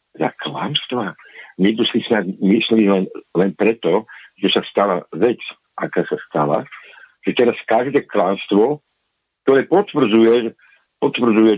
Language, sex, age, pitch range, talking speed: Slovak, male, 60-79, 85-135 Hz, 120 wpm